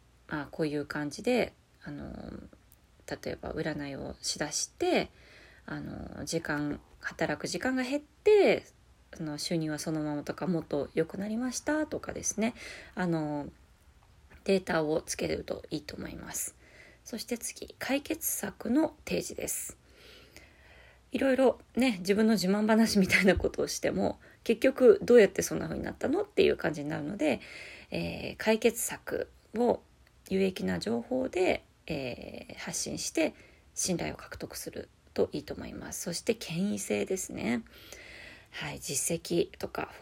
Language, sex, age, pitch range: Japanese, female, 30-49, 150-235 Hz